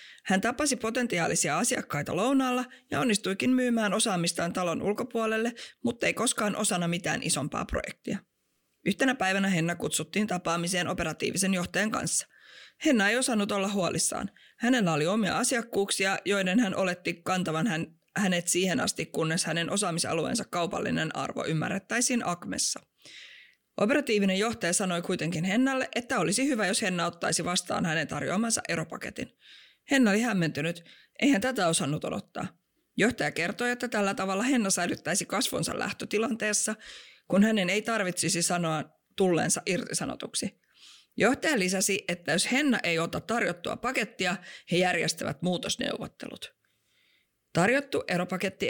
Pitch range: 175-230 Hz